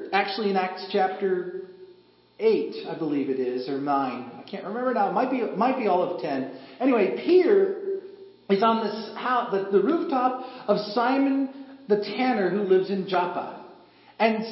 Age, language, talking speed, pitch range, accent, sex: 40-59, English, 170 wpm, 195-285 Hz, American, male